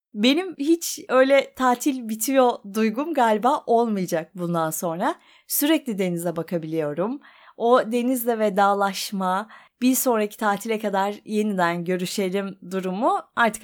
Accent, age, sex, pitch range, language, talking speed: native, 30-49, female, 195-275 Hz, Turkish, 105 wpm